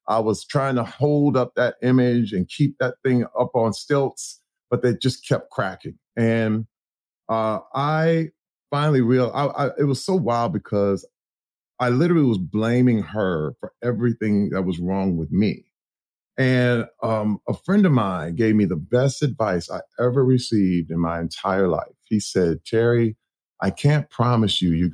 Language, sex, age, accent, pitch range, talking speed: English, male, 40-59, American, 105-160 Hz, 165 wpm